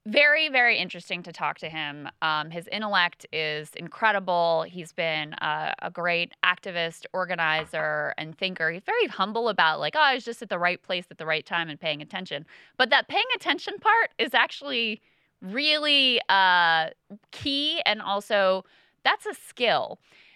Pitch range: 170-220 Hz